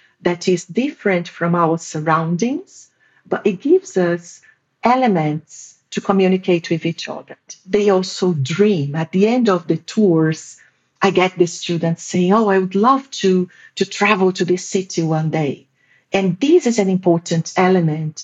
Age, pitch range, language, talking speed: 50-69, 160-195 Hz, English, 160 wpm